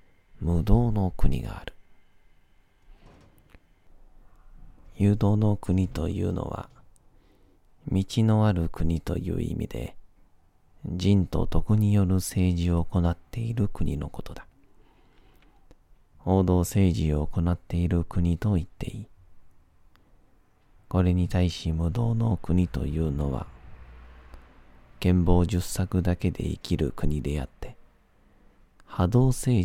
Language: Japanese